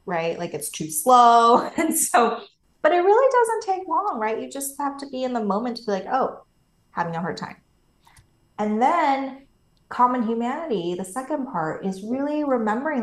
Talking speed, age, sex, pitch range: 185 wpm, 20-39, female, 175-240 Hz